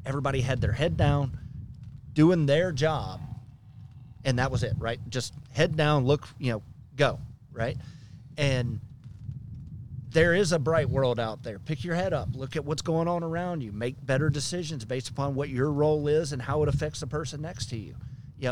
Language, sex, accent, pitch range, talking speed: English, male, American, 120-145 Hz, 190 wpm